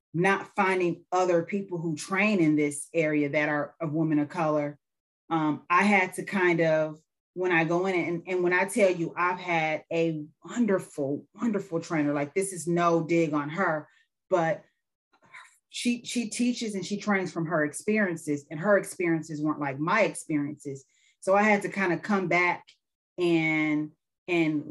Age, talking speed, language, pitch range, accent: 30-49, 170 wpm, English, 155-195 Hz, American